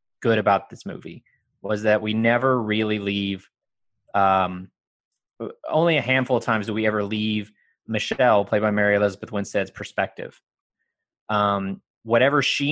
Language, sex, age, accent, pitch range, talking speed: English, male, 20-39, American, 105-125 Hz, 140 wpm